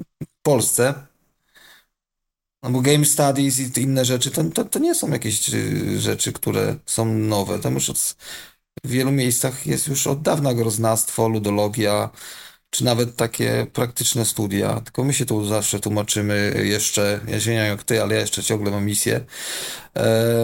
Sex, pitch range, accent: male, 110-130 Hz, native